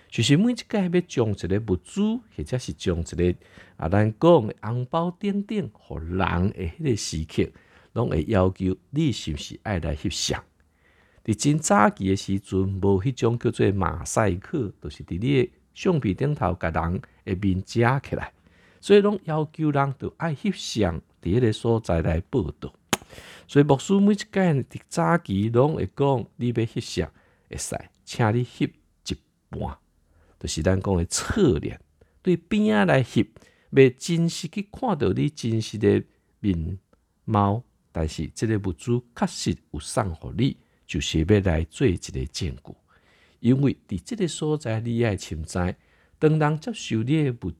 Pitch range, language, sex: 90-145 Hz, Chinese, male